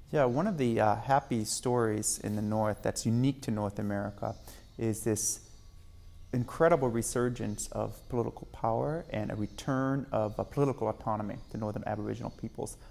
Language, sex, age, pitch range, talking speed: English, male, 30-49, 105-120 Hz, 155 wpm